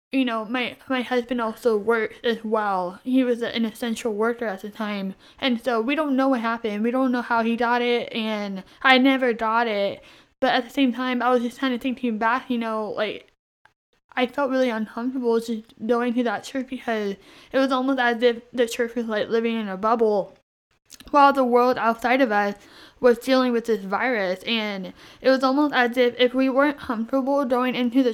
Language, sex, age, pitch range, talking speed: English, female, 10-29, 220-255 Hz, 210 wpm